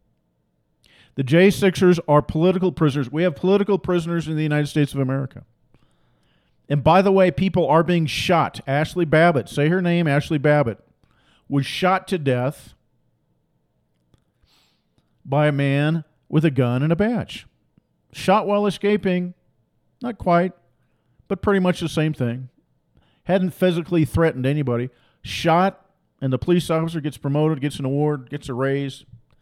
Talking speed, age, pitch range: 145 wpm, 50-69, 130-170 Hz